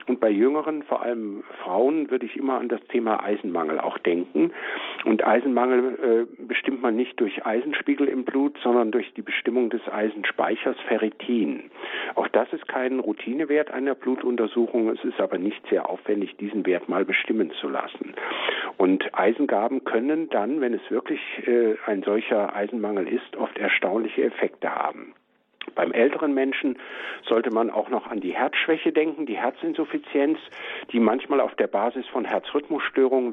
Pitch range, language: 120-160 Hz, German